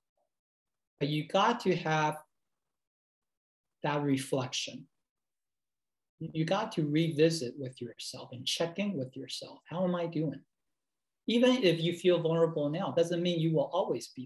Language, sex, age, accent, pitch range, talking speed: English, male, 40-59, American, 145-195 Hz, 140 wpm